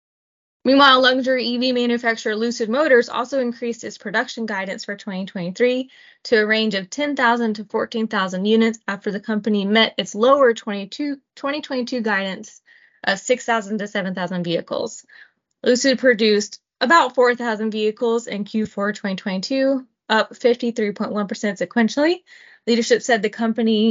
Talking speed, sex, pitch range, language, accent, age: 125 wpm, female, 205-245 Hz, English, American, 20-39